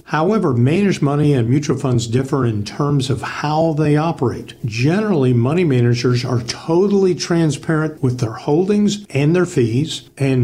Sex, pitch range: male, 125-155 Hz